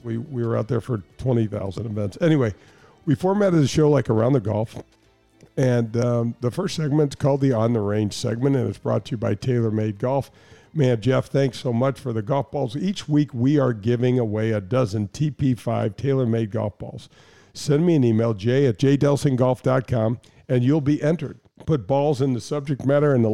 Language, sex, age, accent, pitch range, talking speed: English, male, 50-69, American, 115-140 Hz, 200 wpm